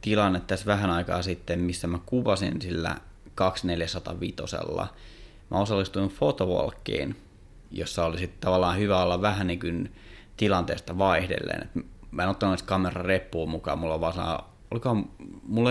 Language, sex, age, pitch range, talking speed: Finnish, male, 30-49, 90-105 Hz, 130 wpm